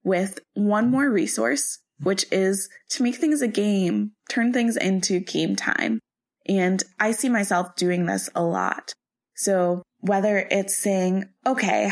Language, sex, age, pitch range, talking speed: English, female, 20-39, 175-205 Hz, 145 wpm